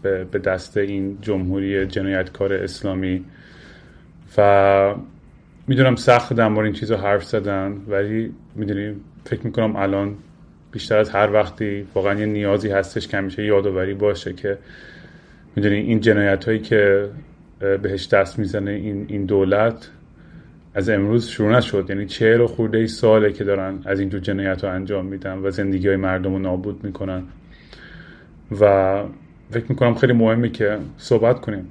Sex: male